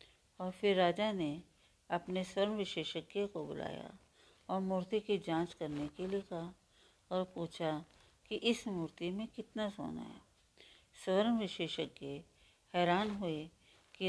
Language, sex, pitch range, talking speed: Hindi, female, 165-205 Hz, 130 wpm